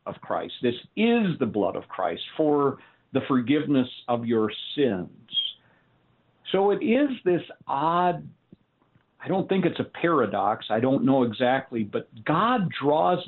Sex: male